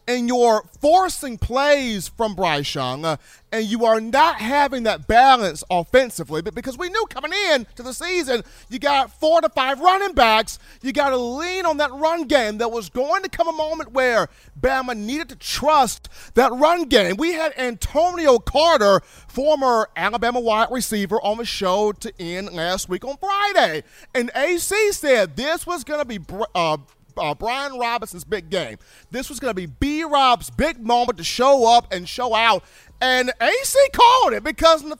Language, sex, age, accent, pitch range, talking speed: English, male, 40-59, American, 230-325 Hz, 185 wpm